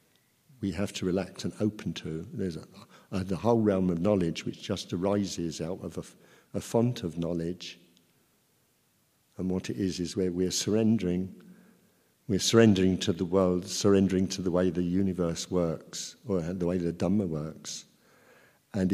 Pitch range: 90-105 Hz